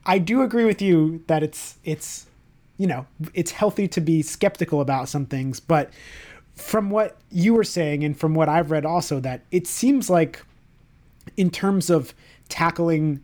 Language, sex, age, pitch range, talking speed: English, male, 30-49, 145-180 Hz, 170 wpm